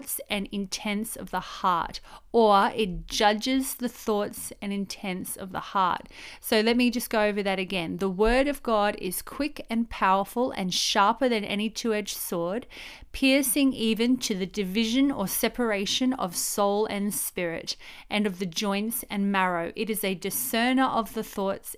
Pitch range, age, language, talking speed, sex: 195-235 Hz, 30-49, English, 170 wpm, female